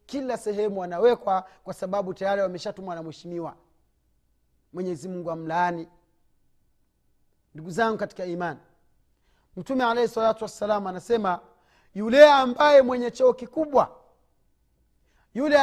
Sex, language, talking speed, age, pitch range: male, Swahili, 100 wpm, 40-59, 205-275 Hz